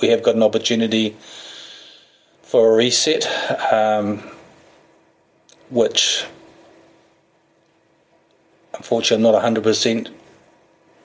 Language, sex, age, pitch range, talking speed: English, male, 30-49, 110-115 Hz, 75 wpm